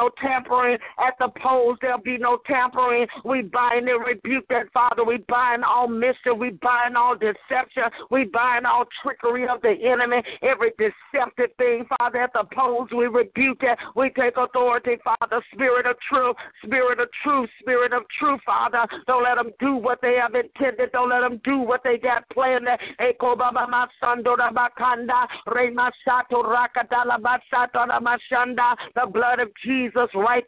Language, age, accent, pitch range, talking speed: English, 50-69, American, 235-250 Hz, 150 wpm